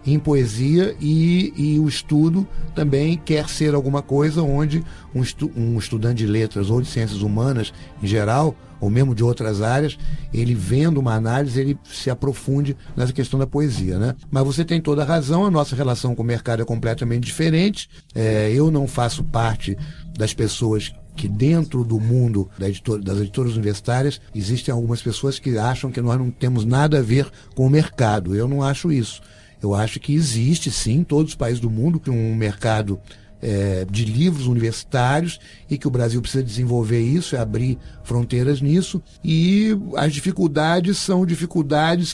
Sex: male